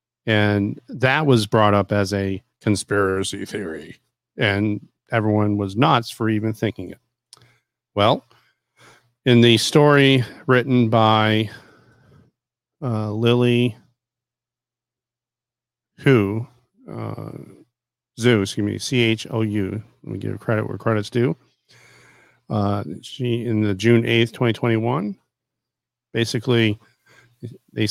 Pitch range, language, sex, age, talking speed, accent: 105-125 Hz, English, male, 50-69, 105 wpm, American